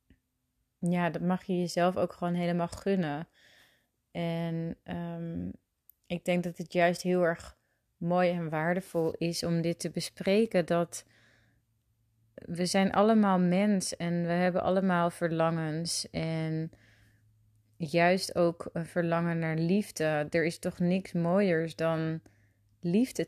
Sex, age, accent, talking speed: female, 30-49, Dutch, 125 wpm